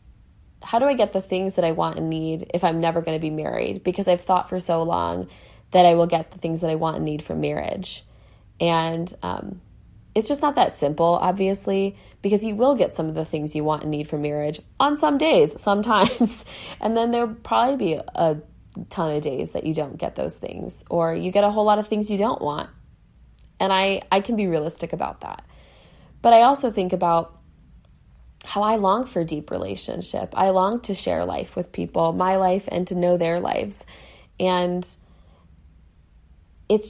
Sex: female